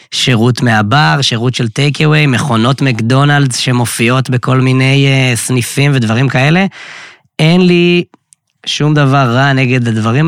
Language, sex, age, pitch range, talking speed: Hebrew, male, 20-39, 110-145 Hz, 115 wpm